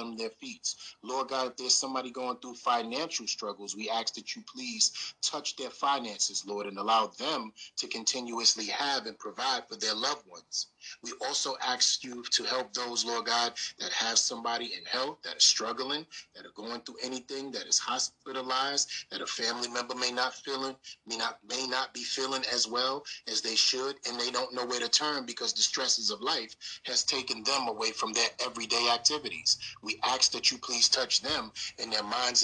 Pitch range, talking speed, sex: 120-135 Hz, 195 wpm, male